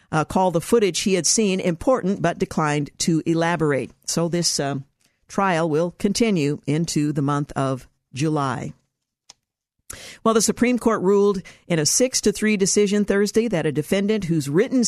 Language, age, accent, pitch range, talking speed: English, 50-69, American, 155-200 Hz, 160 wpm